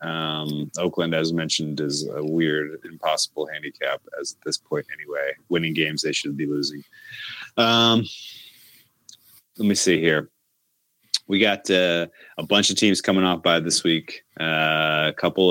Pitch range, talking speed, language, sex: 75-90 Hz, 155 wpm, English, male